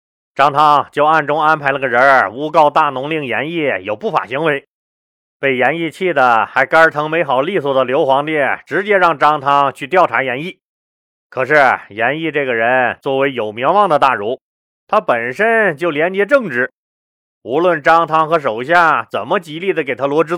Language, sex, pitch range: Chinese, male, 135-185 Hz